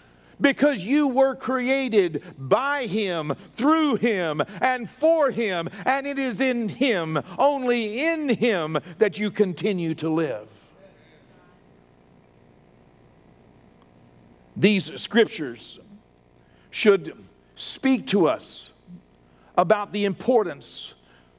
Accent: American